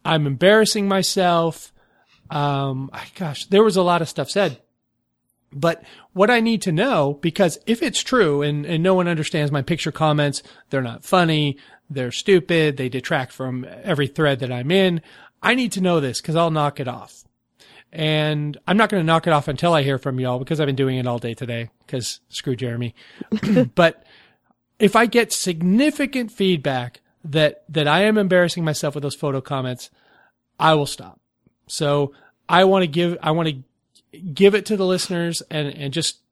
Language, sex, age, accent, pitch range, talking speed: English, male, 40-59, American, 140-185 Hz, 190 wpm